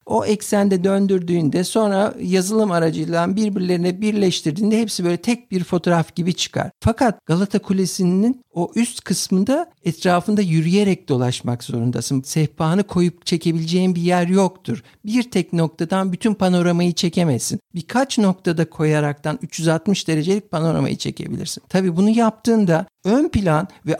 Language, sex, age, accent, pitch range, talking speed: Turkish, male, 60-79, native, 170-225 Hz, 125 wpm